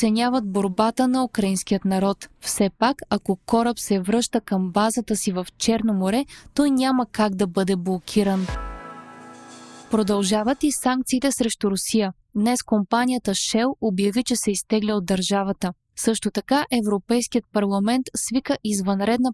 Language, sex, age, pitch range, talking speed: Bulgarian, female, 20-39, 200-245 Hz, 135 wpm